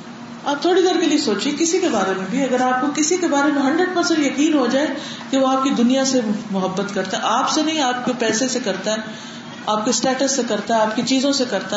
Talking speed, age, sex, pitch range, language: 260 wpm, 40-59, female, 215-280 Hz, Urdu